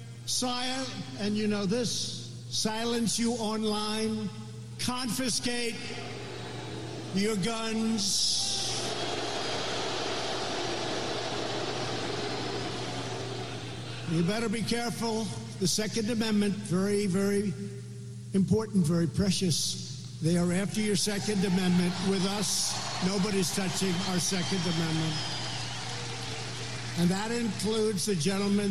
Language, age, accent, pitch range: English, 60-79, American, 155-220 Hz